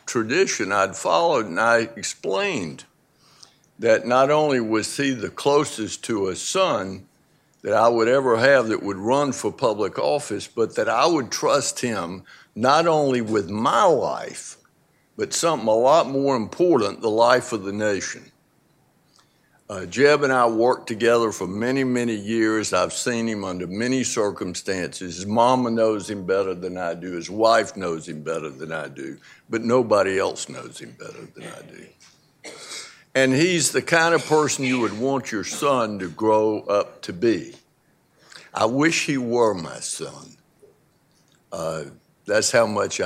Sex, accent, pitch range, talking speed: male, American, 105-140 Hz, 160 wpm